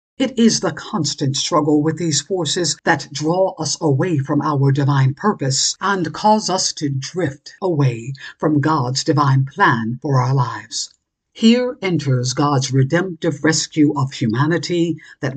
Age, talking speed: 60-79, 145 wpm